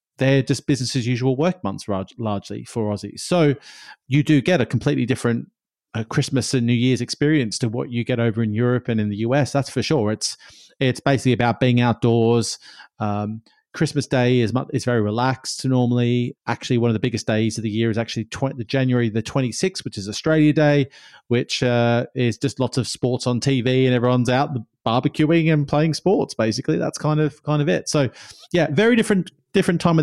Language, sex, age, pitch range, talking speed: English, male, 30-49, 115-145 Hz, 200 wpm